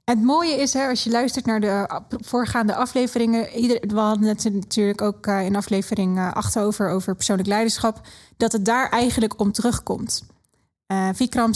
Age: 20-39